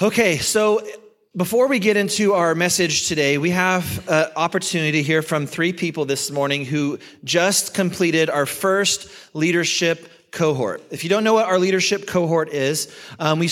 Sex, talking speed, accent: male, 170 wpm, American